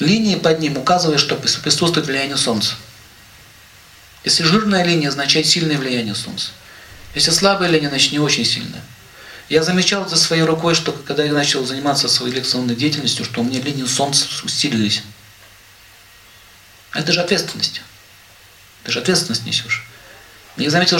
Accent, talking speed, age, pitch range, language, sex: native, 140 wpm, 50-69, 115-165 Hz, Russian, male